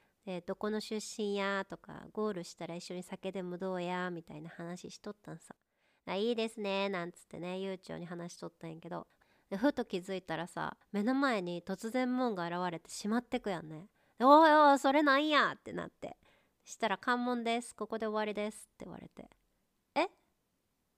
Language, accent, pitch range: Japanese, native, 175-230 Hz